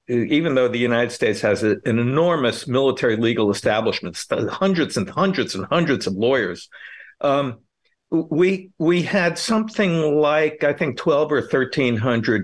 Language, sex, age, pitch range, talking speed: English, male, 50-69, 125-175 Hz, 145 wpm